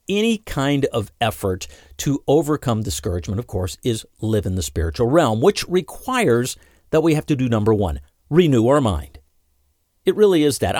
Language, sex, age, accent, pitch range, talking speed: English, male, 50-69, American, 95-155 Hz, 170 wpm